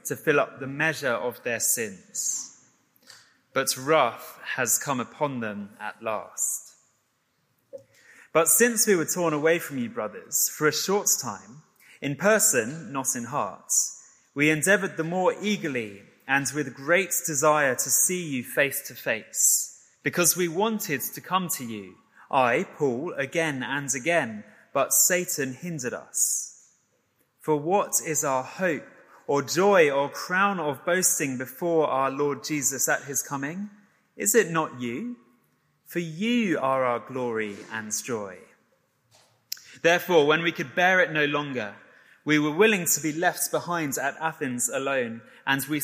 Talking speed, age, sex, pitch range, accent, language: 150 wpm, 20-39, male, 130-175 Hz, British, English